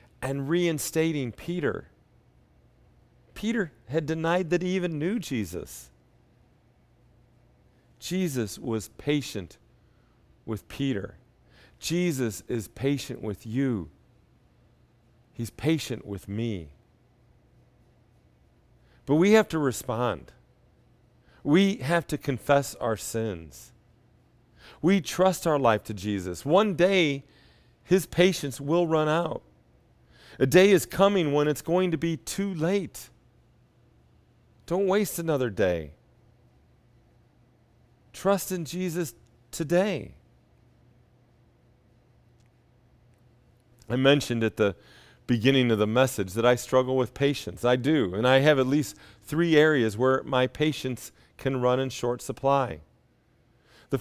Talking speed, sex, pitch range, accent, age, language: 110 wpm, male, 115-160 Hz, American, 40-59, English